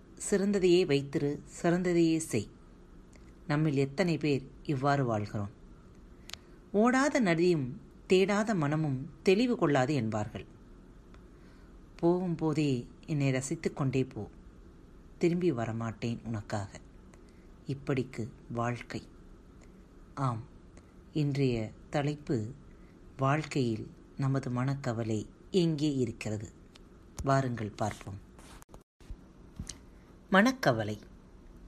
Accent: native